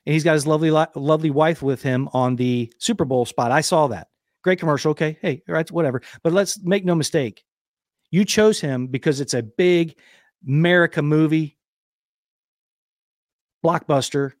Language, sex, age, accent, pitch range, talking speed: English, male, 50-69, American, 130-170 Hz, 160 wpm